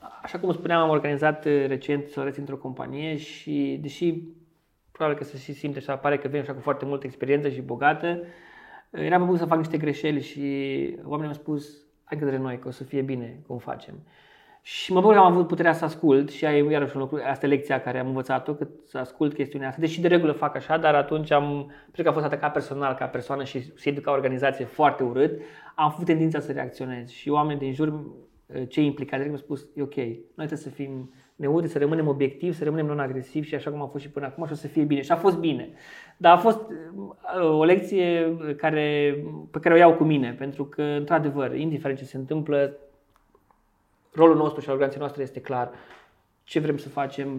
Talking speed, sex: 210 wpm, male